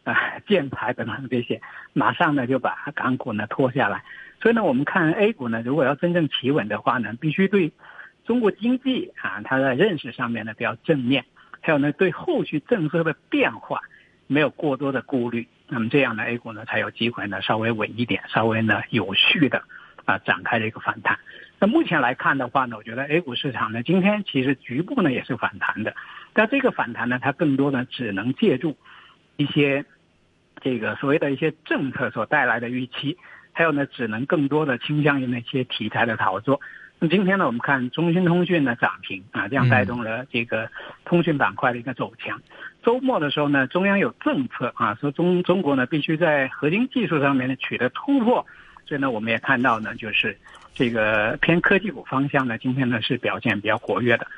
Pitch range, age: 120-170 Hz, 60-79